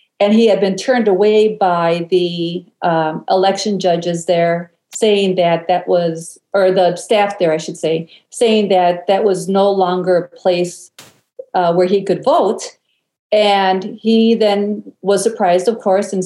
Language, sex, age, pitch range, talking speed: English, female, 50-69, 180-215 Hz, 160 wpm